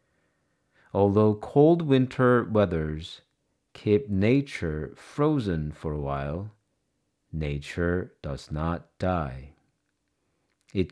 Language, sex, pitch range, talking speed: English, male, 80-110 Hz, 80 wpm